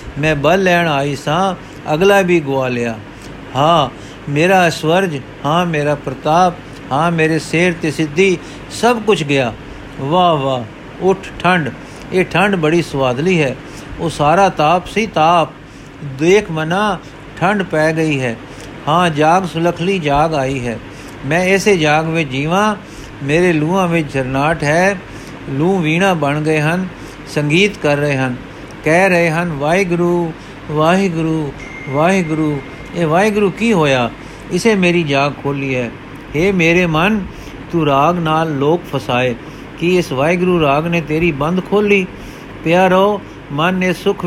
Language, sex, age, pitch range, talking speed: Punjabi, male, 60-79, 145-180 Hz, 140 wpm